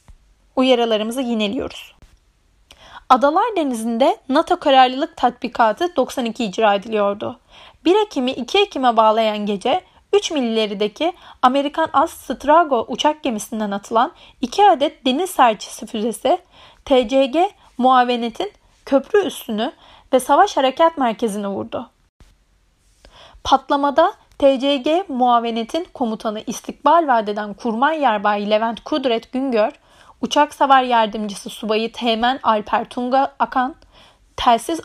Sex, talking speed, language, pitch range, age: female, 100 wpm, Turkish, 225-295 Hz, 30-49